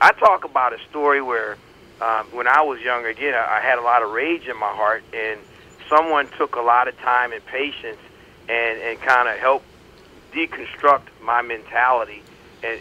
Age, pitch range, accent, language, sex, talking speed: 40-59, 120-150 Hz, American, English, male, 180 wpm